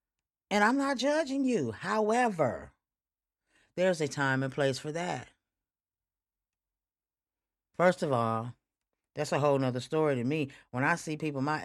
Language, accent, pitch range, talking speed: English, American, 130-160 Hz, 145 wpm